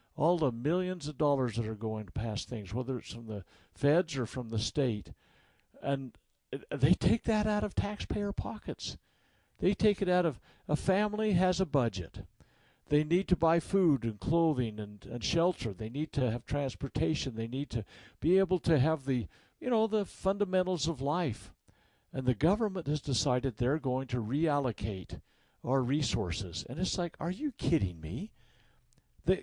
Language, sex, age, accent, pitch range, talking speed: English, male, 60-79, American, 115-165 Hz, 175 wpm